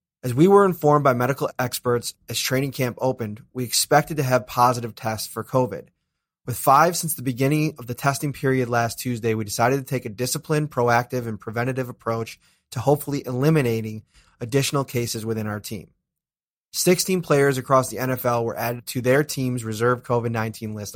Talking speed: 175 wpm